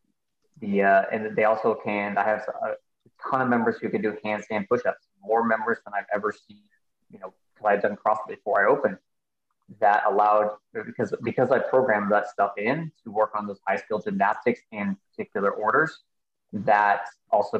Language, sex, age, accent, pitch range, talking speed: English, male, 20-39, American, 100-120 Hz, 175 wpm